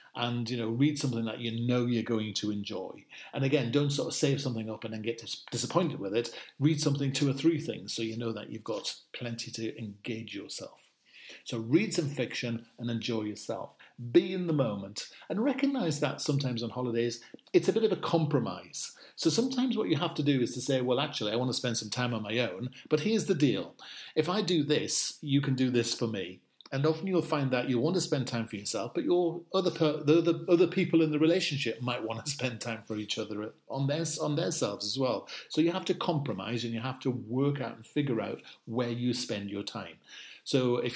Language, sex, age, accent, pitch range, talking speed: English, male, 40-59, British, 115-155 Hz, 235 wpm